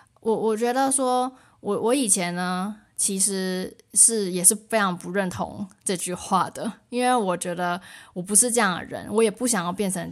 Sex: female